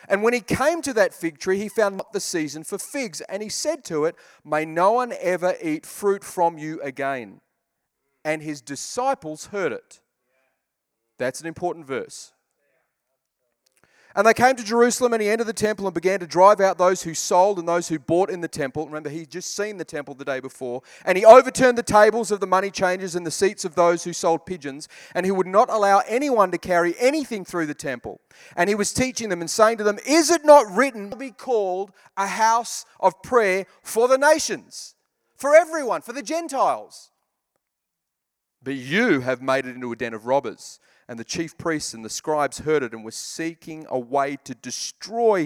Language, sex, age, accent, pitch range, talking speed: English, male, 30-49, Australian, 140-220 Hz, 205 wpm